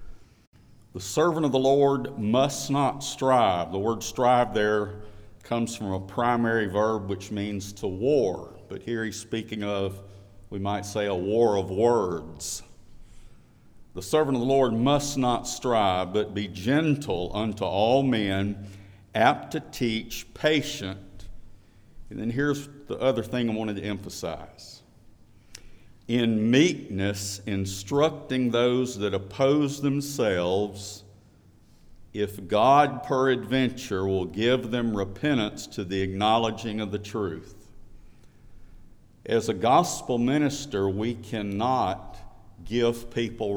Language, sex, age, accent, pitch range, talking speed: English, male, 50-69, American, 100-125 Hz, 125 wpm